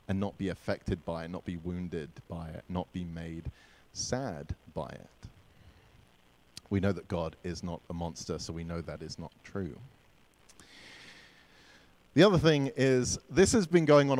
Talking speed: 175 wpm